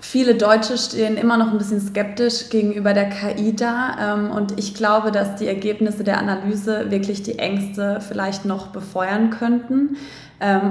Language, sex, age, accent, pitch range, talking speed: German, female, 20-39, German, 195-215 Hz, 165 wpm